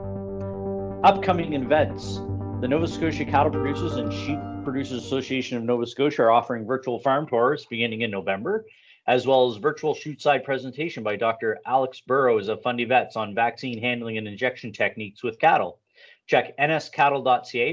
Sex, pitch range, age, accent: male, 110-140 Hz, 30-49, American